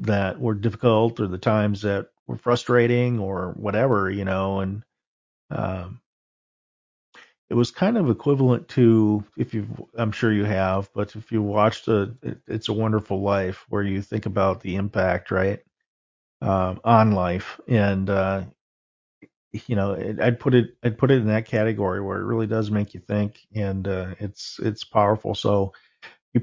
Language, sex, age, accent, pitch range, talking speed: English, male, 40-59, American, 100-120 Hz, 165 wpm